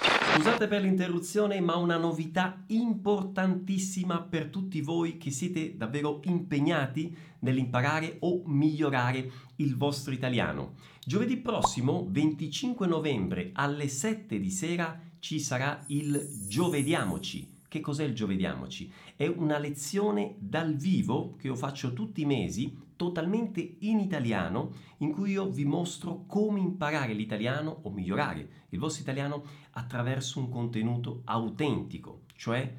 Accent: native